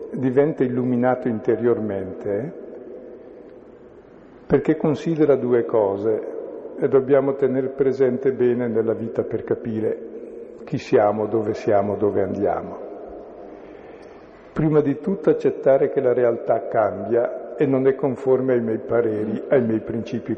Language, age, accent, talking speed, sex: Italian, 60-79, native, 120 wpm, male